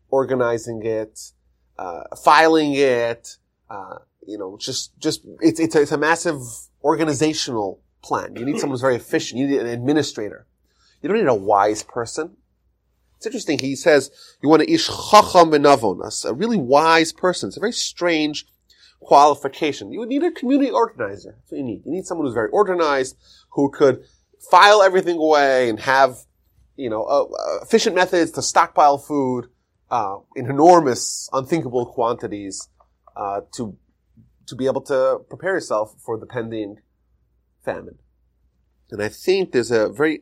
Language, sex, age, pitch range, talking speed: English, male, 30-49, 115-165 Hz, 155 wpm